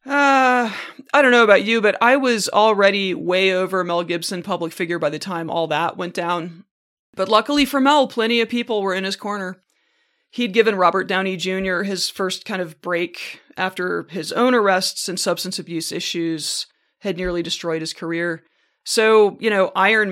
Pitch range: 170-220 Hz